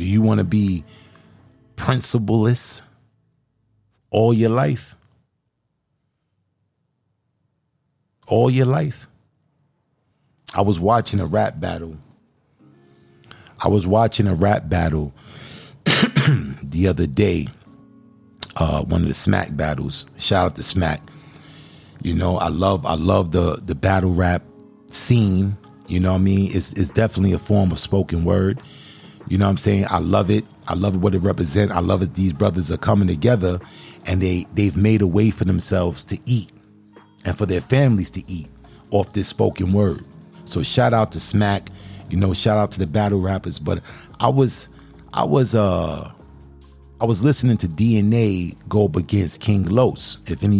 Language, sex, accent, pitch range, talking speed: English, male, American, 90-115 Hz, 155 wpm